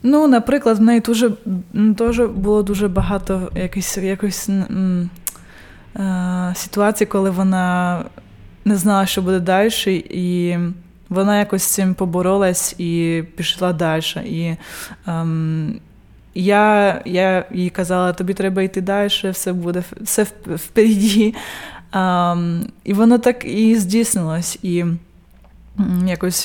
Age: 20-39